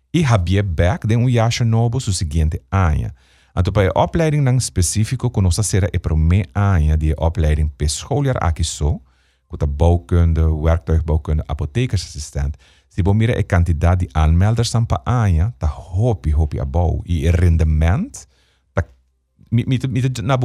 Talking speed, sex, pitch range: 115 wpm, male, 80-100 Hz